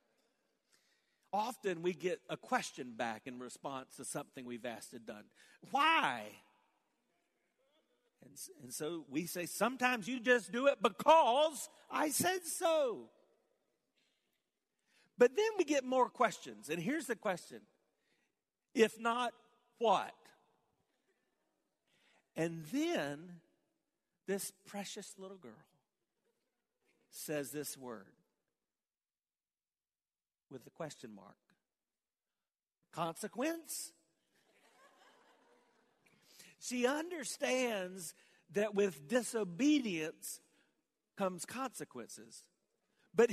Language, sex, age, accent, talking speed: English, male, 50-69, American, 90 wpm